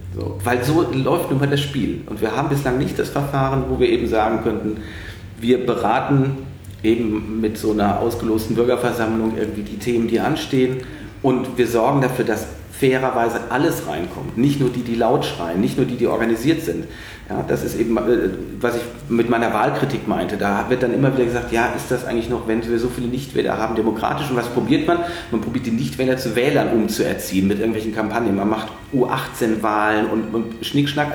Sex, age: male, 40-59